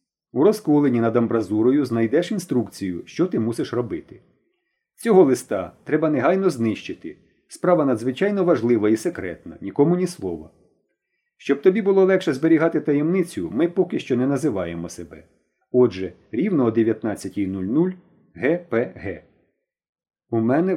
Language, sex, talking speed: Ukrainian, male, 120 wpm